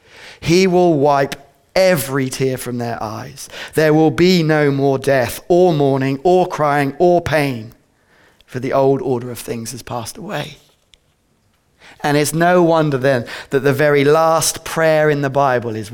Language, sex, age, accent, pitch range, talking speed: English, male, 30-49, British, 120-165 Hz, 160 wpm